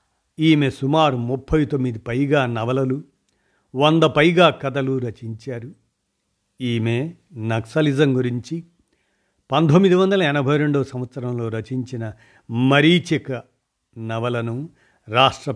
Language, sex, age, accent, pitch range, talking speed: Telugu, male, 50-69, native, 115-145 Hz, 85 wpm